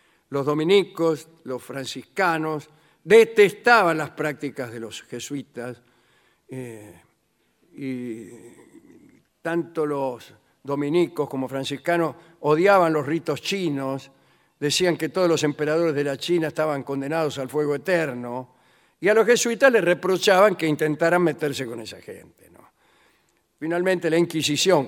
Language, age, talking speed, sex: Spanish, 50-69, 120 wpm, male